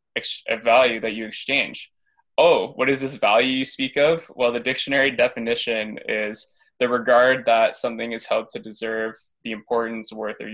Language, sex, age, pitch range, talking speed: English, male, 20-39, 110-130 Hz, 170 wpm